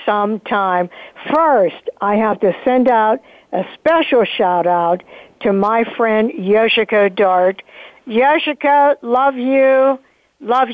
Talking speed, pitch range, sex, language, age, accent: 115 wpm, 190-245 Hz, female, English, 60-79, American